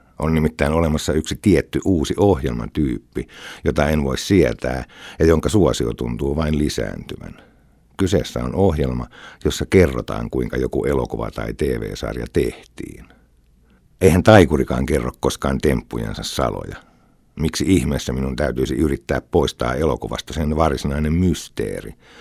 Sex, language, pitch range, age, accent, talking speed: male, Finnish, 65-80 Hz, 60-79, native, 120 wpm